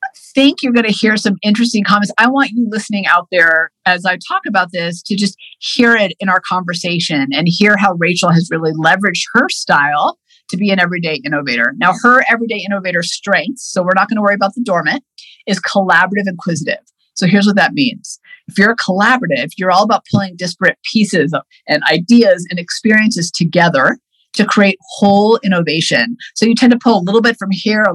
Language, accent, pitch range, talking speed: English, American, 175-230 Hz, 200 wpm